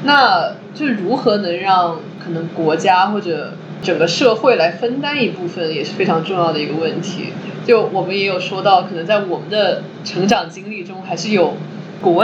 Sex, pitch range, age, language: female, 175-215 Hz, 20-39, Chinese